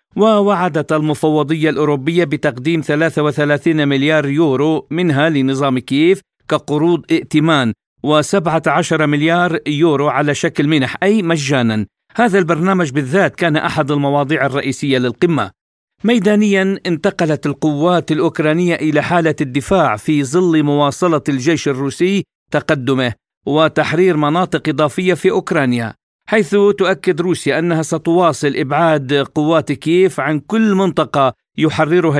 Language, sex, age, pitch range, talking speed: Arabic, male, 50-69, 145-175 Hz, 110 wpm